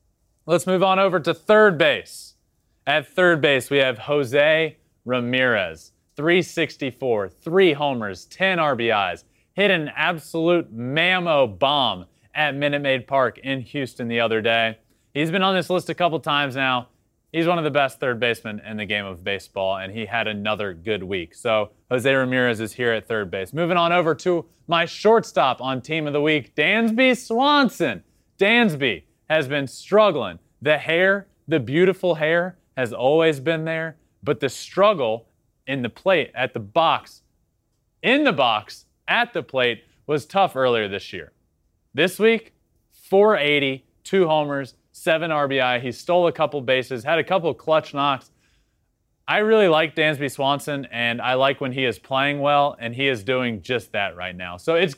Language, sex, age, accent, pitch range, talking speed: English, male, 20-39, American, 120-170 Hz, 170 wpm